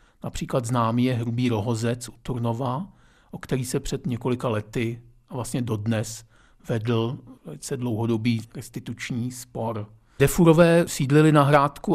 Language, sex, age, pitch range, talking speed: Czech, male, 50-69, 120-135 Hz, 125 wpm